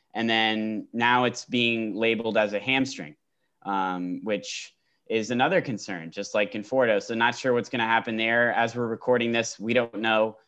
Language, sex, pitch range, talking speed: English, male, 105-120 Hz, 185 wpm